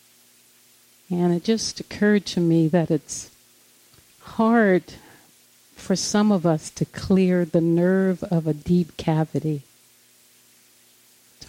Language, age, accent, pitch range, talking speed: English, 50-69, American, 140-165 Hz, 115 wpm